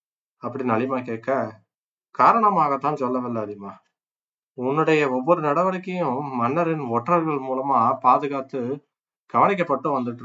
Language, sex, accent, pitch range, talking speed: Tamil, male, native, 125-160 Hz, 90 wpm